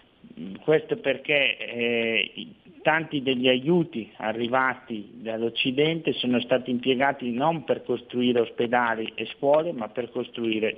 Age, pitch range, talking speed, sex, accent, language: 50-69, 115-135 Hz, 110 wpm, male, native, Italian